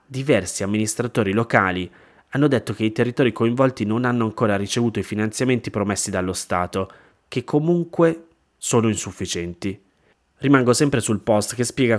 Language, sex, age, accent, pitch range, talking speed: Italian, male, 20-39, native, 95-120 Hz, 140 wpm